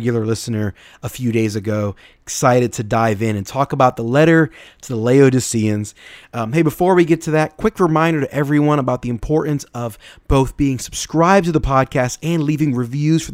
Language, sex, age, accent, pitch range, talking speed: English, male, 30-49, American, 120-155 Hz, 195 wpm